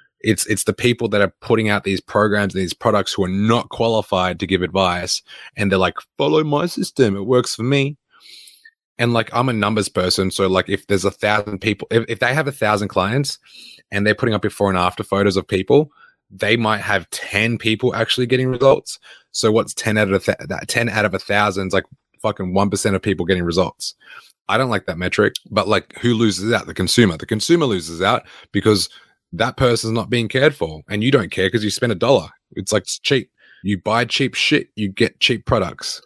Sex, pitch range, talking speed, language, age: male, 100-120 Hz, 220 wpm, English, 20-39